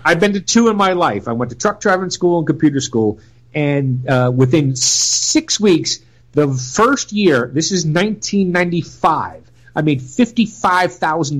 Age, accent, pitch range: 40-59, American, 120-170 Hz